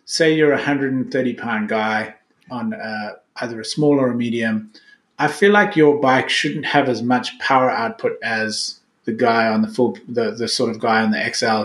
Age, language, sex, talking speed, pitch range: 30-49, English, male, 200 wpm, 115-155 Hz